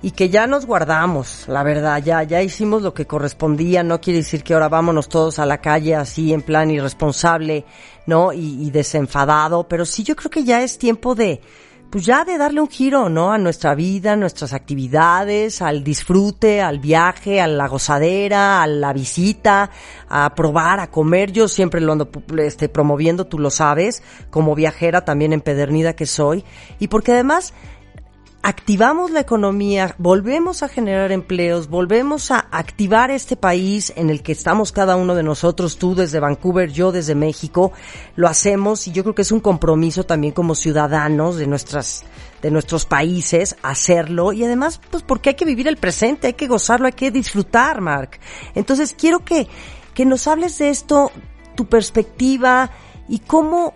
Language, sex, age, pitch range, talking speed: Spanish, female, 40-59, 155-230 Hz, 175 wpm